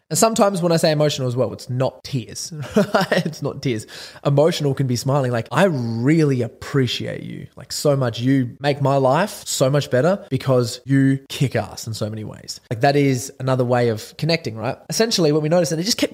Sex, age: male, 20-39